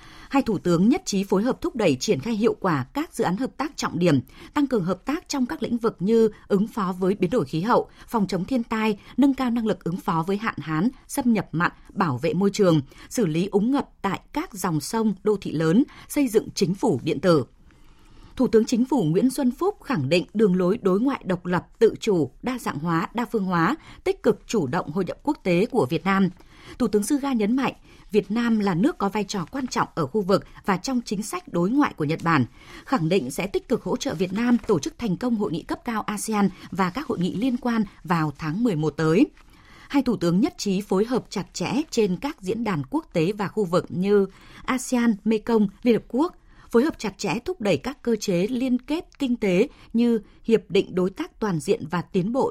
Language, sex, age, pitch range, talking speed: Vietnamese, female, 20-39, 185-245 Hz, 240 wpm